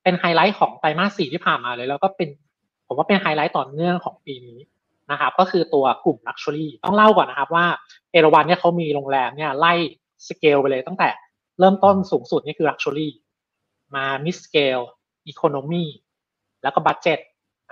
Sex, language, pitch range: male, Thai, 135-180 Hz